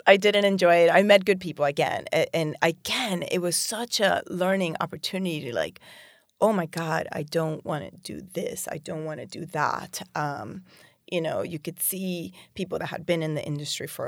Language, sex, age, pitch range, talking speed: English, female, 30-49, 160-200 Hz, 205 wpm